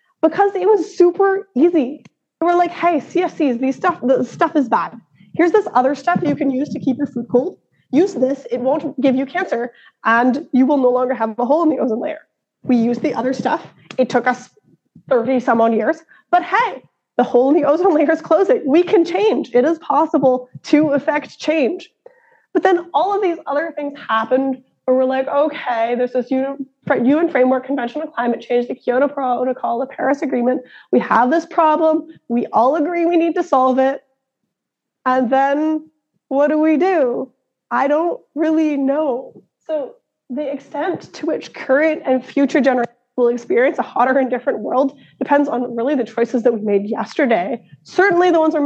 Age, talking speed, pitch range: 20-39, 190 wpm, 255-320 Hz